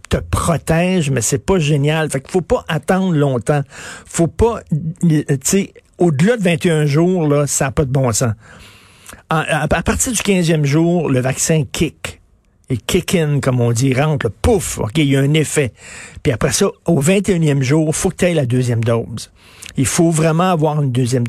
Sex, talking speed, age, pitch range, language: male, 200 wpm, 50-69, 130-165 Hz, French